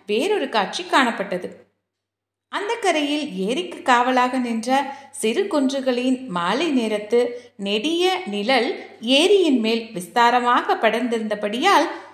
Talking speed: 85 wpm